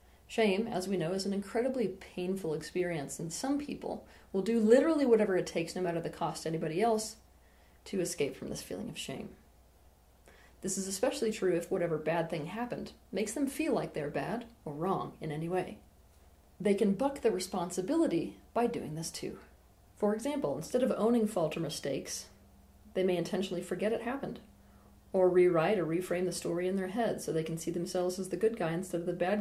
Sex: female